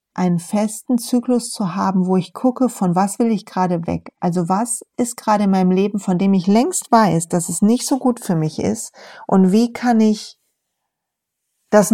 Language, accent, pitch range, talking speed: German, German, 185-235 Hz, 195 wpm